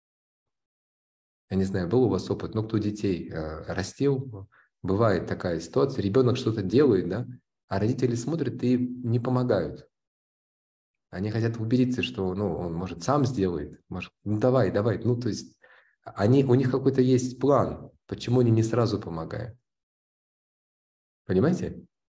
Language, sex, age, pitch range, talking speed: Russian, male, 30-49, 100-130 Hz, 145 wpm